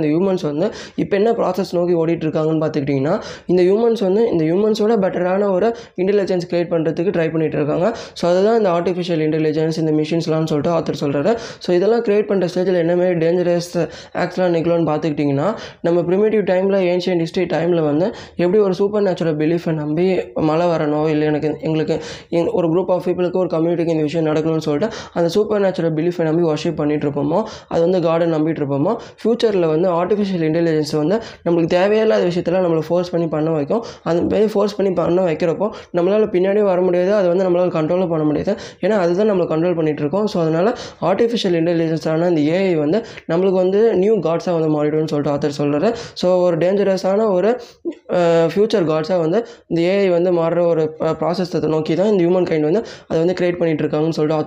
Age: 20-39